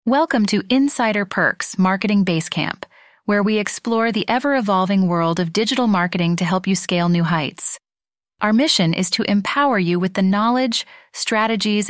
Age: 30-49